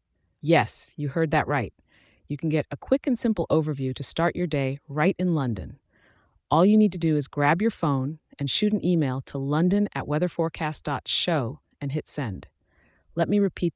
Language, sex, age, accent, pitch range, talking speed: English, female, 30-49, American, 135-170 Hz, 190 wpm